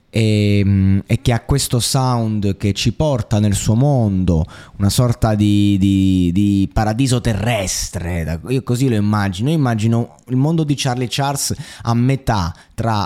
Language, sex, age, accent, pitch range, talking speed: Italian, male, 20-39, native, 100-130 Hz, 140 wpm